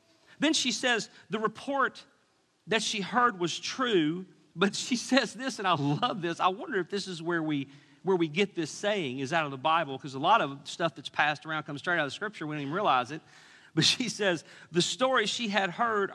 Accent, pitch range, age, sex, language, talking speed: American, 165-245 Hz, 40-59, male, English, 230 wpm